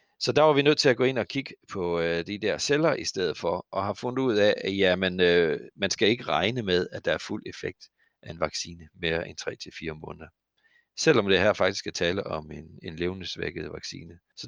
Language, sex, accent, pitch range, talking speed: Danish, male, native, 85-115 Hz, 230 wpm